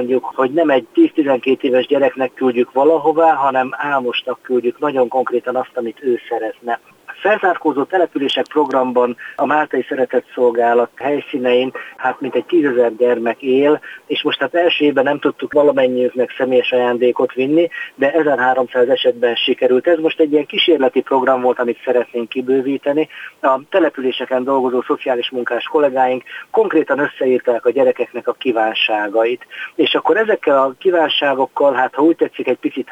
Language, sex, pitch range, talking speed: Hungarian, male, 125-160 Hz, 145 wpm